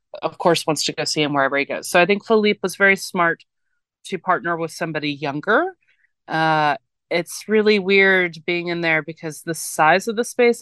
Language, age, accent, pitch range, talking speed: English, 30-49, American, 155-195 Hz, 200 wpm